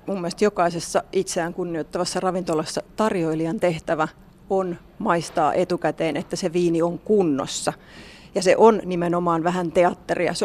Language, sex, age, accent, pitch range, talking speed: Finnish, female, 30-49, native, 170-210 Hz, 125 wpm